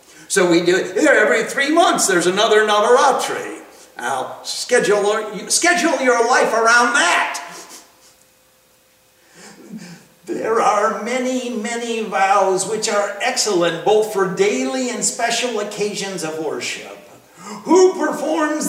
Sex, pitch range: male, 215-300 Hz